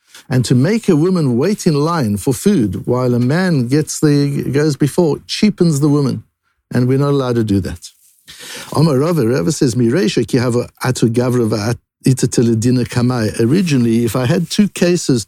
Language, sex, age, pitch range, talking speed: English, male, 60-79, 120-155 Hz, 140 wpm